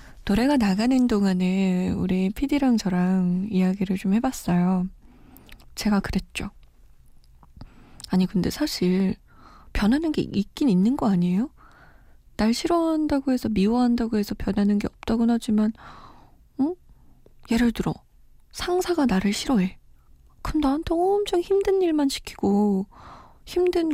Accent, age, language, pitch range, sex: native, 20-39, Korean, 185-255 Hz, female